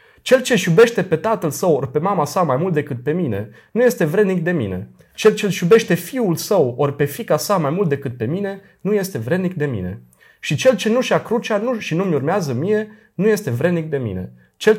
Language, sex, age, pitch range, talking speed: Romanian, male, 30-49, 125-195 Hz, 235 wpm